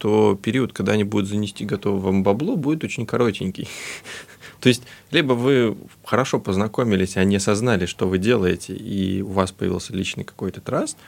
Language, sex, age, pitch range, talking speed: English, male, 20-39, 95-120 Hz, 160 wpm